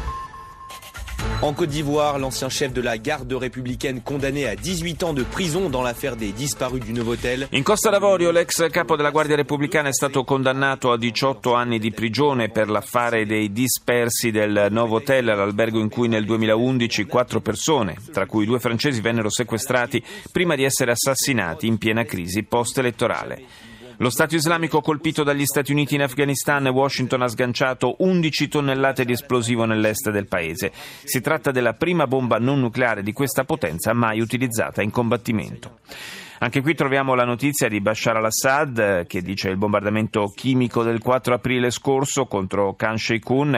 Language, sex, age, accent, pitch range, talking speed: Italian, male, 30-49, native, 115-140 Hz, 160 wpm